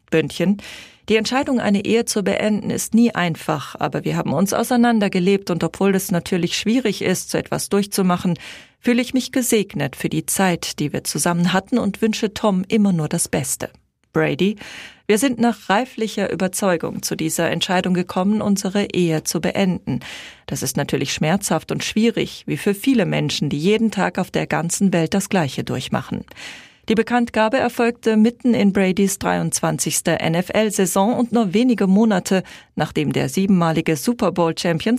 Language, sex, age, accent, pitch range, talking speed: German, female, 40-59, German, 175-225 Hz, 160 wpm